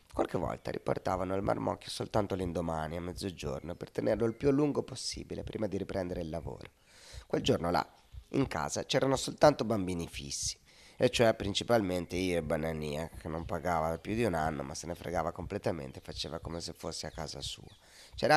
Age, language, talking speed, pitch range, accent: 30-49, Italian, 180 wpm, 85-110 Hz, native